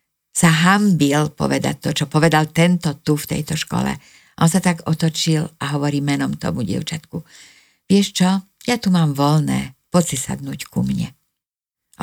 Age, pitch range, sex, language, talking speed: 50-69, 145-175 Hz, female, Slovak, 160 wpm